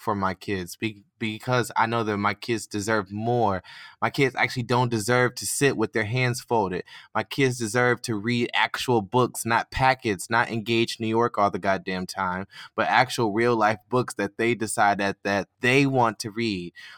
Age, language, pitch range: 20-39, English, 110-130 Hz